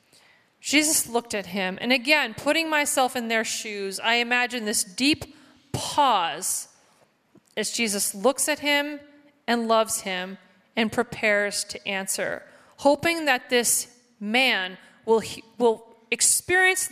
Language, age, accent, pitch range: English, 30-49, American, 220-285 Hz